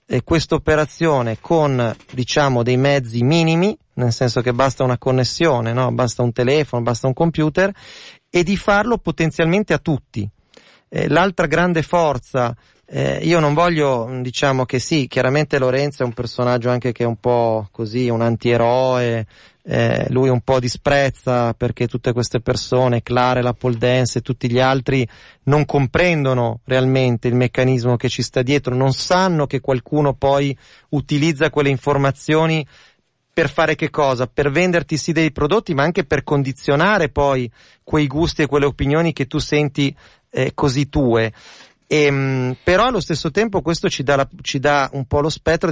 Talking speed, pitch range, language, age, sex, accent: 155 wpm, 125-160 Hz, Italian, 30-49, male, native